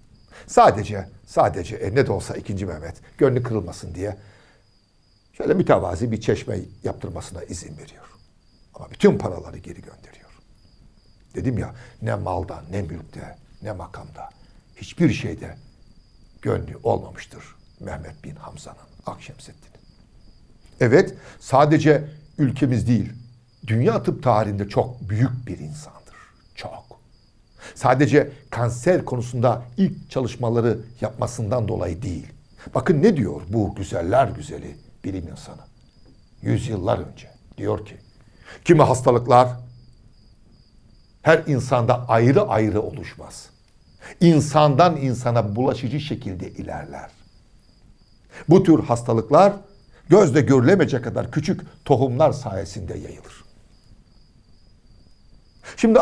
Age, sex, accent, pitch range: 60-79, male, native, 105-140 Hz